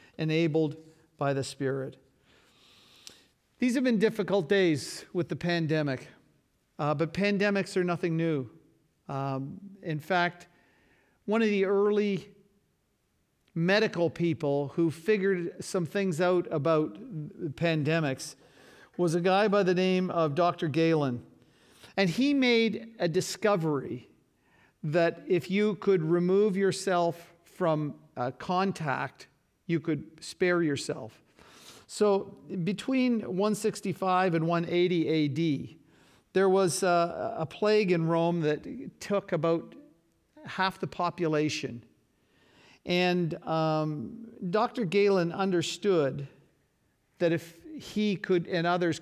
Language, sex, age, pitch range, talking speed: English, male, 50-69, 155-195 Hz, 110 wpm